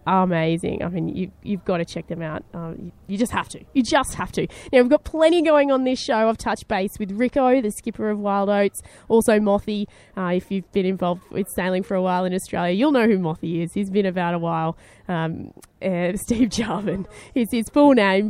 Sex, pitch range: female, 190-225 Hz